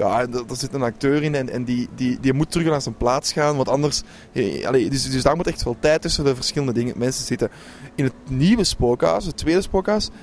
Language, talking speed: Dutch, 215 wpm